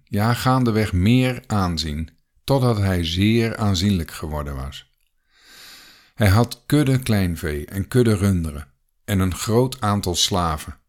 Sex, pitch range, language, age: male, 85-110 Hz, Dutch, 50-69